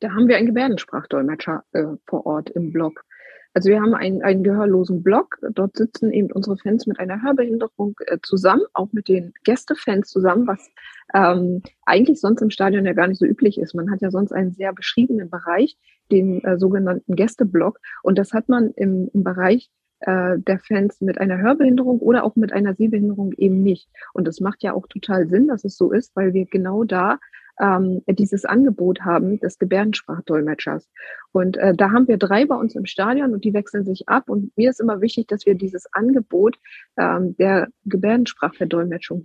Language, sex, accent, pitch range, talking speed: German, female, German, 190-225 Hz, 190 wpm